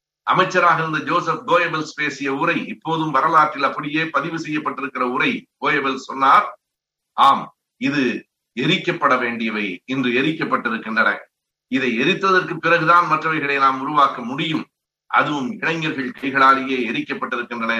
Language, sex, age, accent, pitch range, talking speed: Tamil, male, 50-69, native, 125-155 Hz, 105 wpm